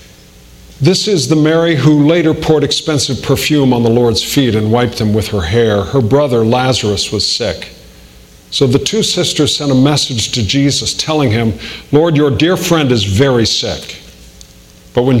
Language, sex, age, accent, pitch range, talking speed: English, male, 50-69, American, 105-155 Hz, 175 wpm